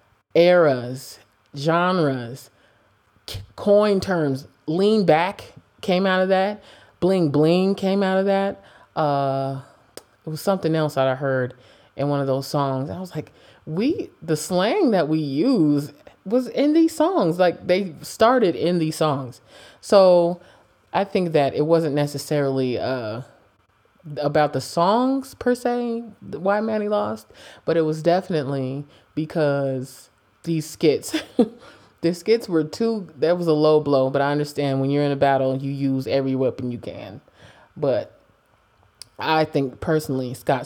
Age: 20-39